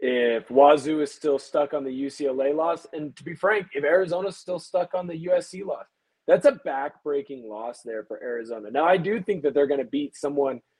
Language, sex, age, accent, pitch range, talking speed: English, male, 20-39, American, 140-185 Hz, 210 wpm